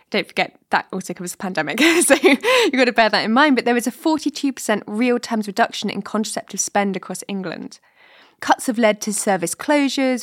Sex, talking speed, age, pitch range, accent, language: female, 195 wpm, 20-39, 195-235 Hz, British, English